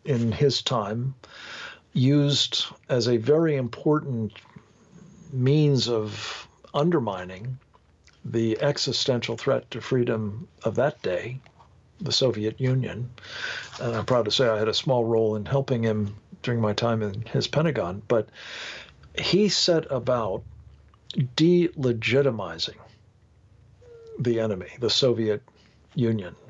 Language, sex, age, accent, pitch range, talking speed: English, male, 50-69, American, 110-140 Hz, 115 wpm